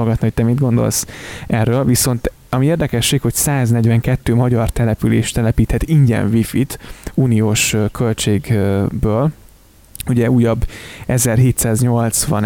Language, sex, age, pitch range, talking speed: Hungarian, male, 20-39, 110-120 Hz, 100 wpm